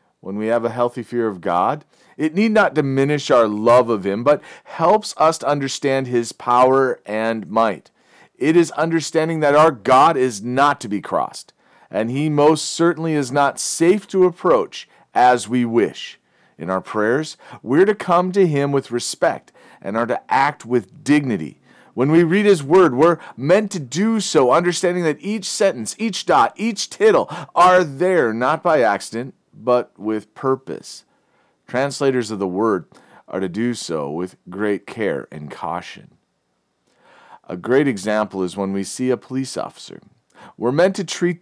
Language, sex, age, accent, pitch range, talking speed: English, male, 40-59, American, 115-160 Hz, 170 wpm